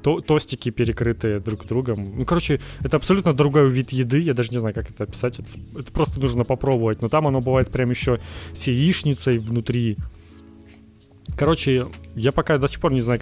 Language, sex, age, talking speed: Ukrainian, male, 20-39, 180 wpm